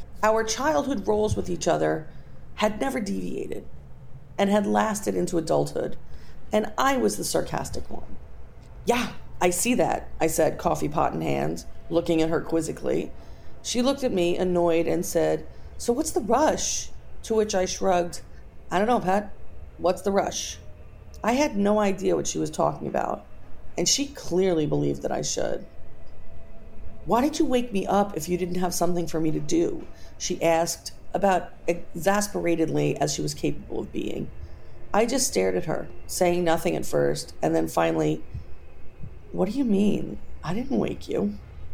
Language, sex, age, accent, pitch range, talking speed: English, female, 40-59, American, 135-215 Hz, 170 wpm